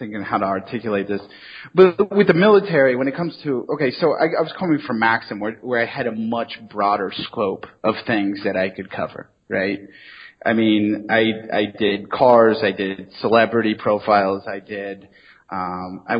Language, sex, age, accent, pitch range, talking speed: English, male, 30-49, American, 105-135 Hz, 185 wpm